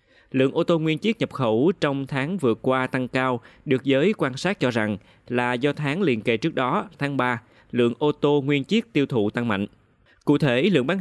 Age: 20-39